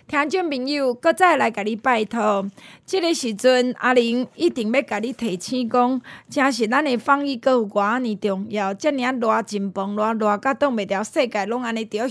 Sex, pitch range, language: female, 220-290 Hz, Chinese